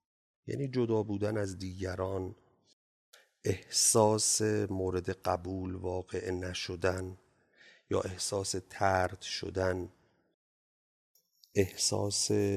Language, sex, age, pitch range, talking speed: Persian, male, 40-59, 95-115 Hz, 70 wpm